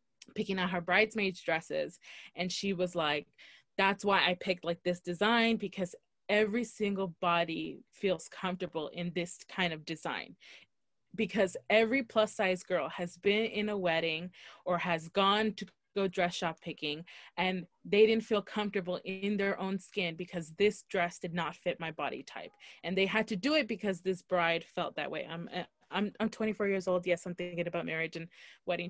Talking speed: 185 wpm